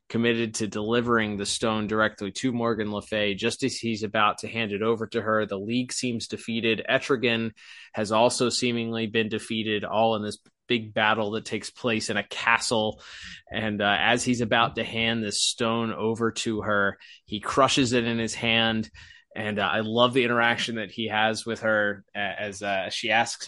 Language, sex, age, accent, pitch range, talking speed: English, male, 20-39, American, 105-120 Hz, 190 wpm